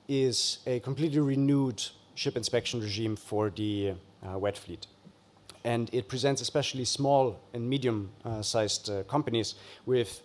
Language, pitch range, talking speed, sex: English, 100-125 Hz, 135 wpm, male